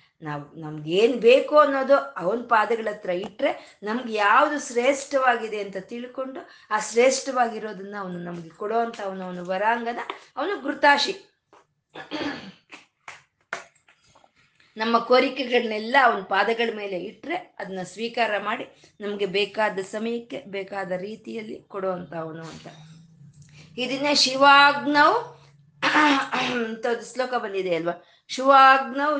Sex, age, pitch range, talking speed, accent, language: female, 20-39, 190-270 Hz, 95 wpm, native, Kannada